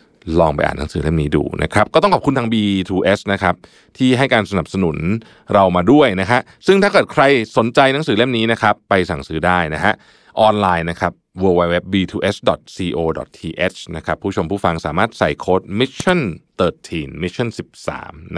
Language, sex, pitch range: Thai, male, 85-115 Hz